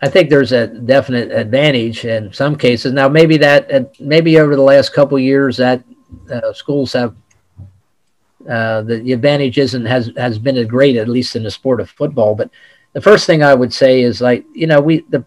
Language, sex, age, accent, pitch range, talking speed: English, male, 50-69, American, 120-140 Hz, 210 wpm